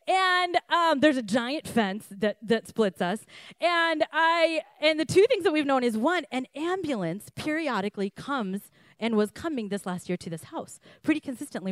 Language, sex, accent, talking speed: English, female, American, 185 wpm